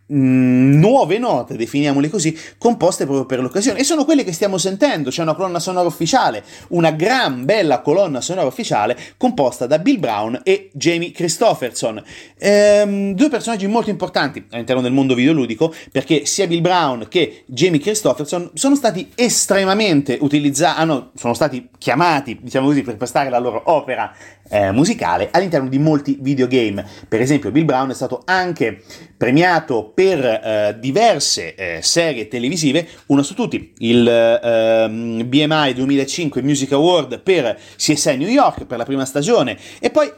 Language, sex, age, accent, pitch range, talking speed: Italian, male, 30-49, native, 130-180 Hz, 145 wpm